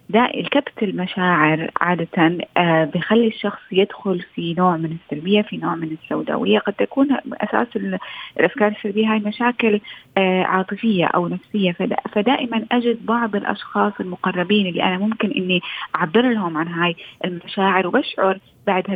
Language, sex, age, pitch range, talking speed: Arabic, female, 20-39, 175-215 Hz, 140 wpm